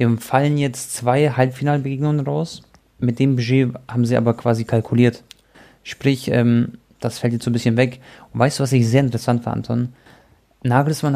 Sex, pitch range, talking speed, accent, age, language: male, 120-140 Hz, 170 wpm, German, 30-49, German